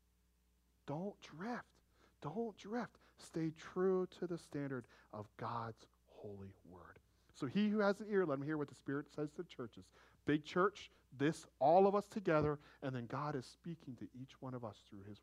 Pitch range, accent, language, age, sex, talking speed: 145-210 Hz, American, English, 40-59, male, 190 wpm